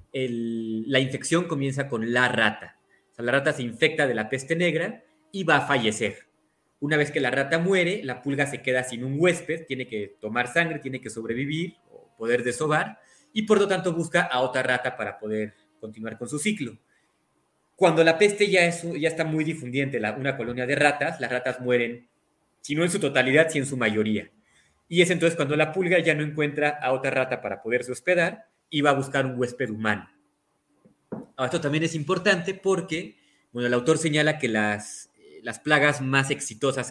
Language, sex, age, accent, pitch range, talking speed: Spanish, male, 30-49, Mexican, 125-160 Hz, 195 wpm